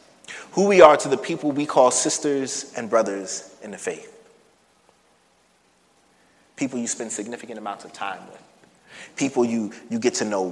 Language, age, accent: English, 30-49, American